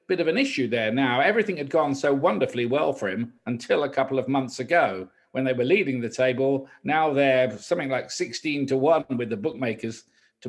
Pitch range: 120-145 Hz